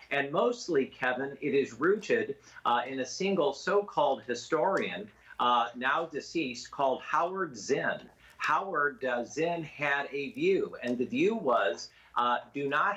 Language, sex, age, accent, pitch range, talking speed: English, male, 50-69, American, 125-180 Hz, 150 wpm